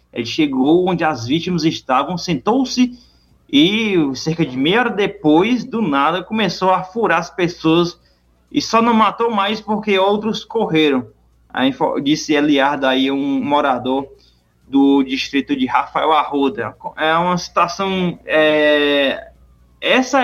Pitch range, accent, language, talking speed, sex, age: 140-215 Hz, Brazilian, Portuguese, 130 wpm, male, 20-39